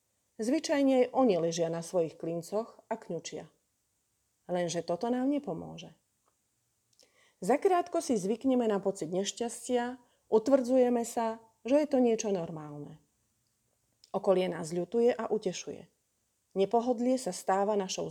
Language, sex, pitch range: Slovak, female, 170-240 Hz